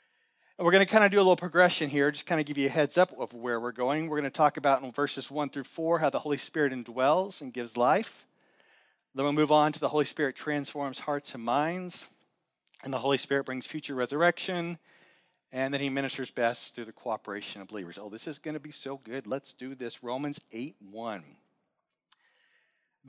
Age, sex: 40-59, male